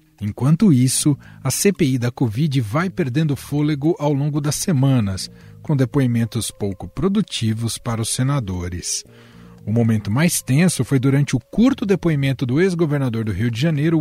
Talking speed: 150 wpm